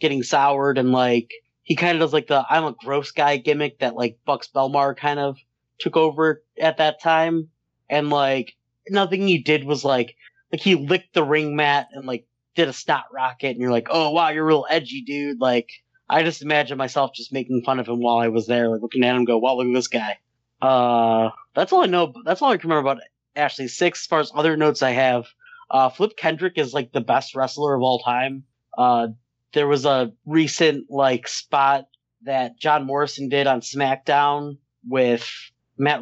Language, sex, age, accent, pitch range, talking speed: English, male, 30-49, American, 125-155 Hz, 210 wpm